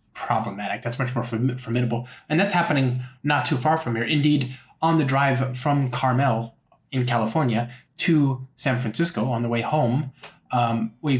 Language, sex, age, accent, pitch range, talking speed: English, male, 20-39, American, 115-130 Hz, 160 wpm